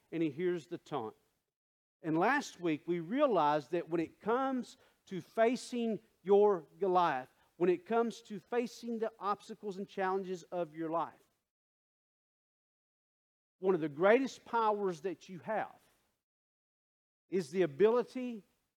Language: English